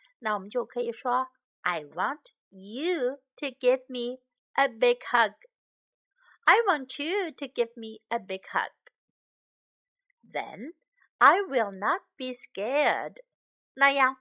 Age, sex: 50-69, female